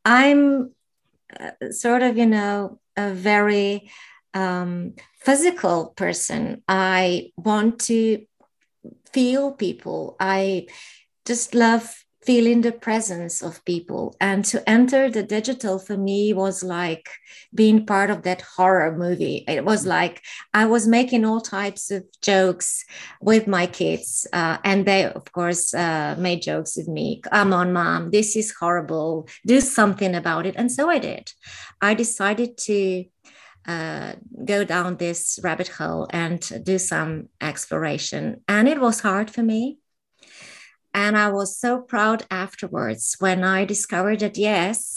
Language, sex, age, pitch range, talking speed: English, female, 30-49, 180-225 Hz, 140 wpm